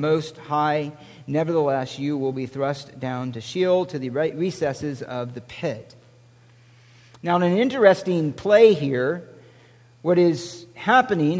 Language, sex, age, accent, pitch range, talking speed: English, male, 50-69, American, 140-200 Hz, 135 wpm